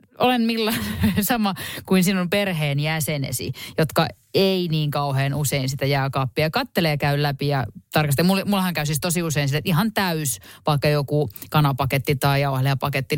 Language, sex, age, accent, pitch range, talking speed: Finnish, female, 30-49, native, 140-200 Hz, 155 wpm